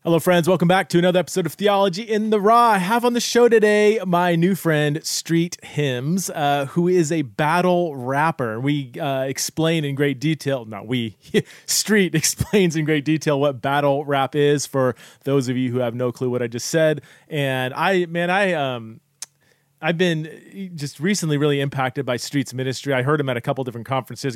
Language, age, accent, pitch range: English, 30-49, American, 125-155 Hz